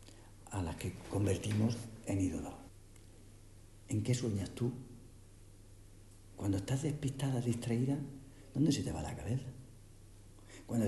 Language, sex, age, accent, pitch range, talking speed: Spanish, male, 60-79, Spanish, 100-120 Hz, 115 wpm